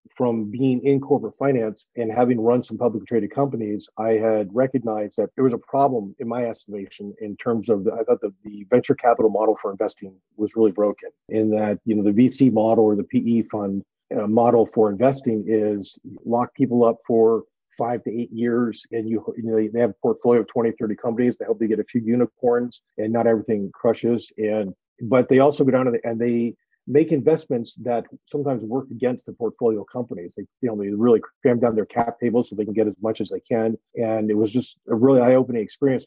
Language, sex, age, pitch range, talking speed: English, male, 40-59, 110-125 Hz, 220 wpm